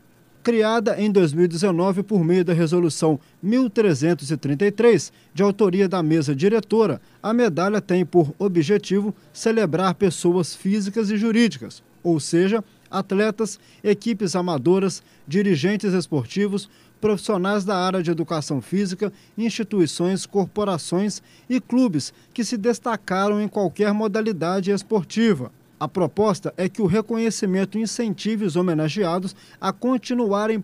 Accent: Brazilian